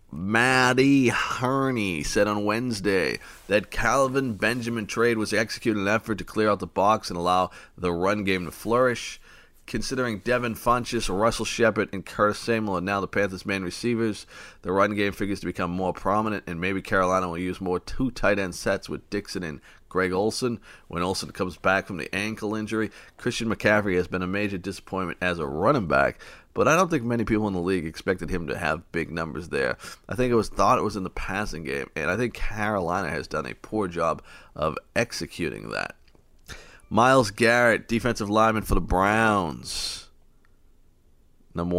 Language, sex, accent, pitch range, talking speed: English, male, American, 90-115 Hz, 185 wpm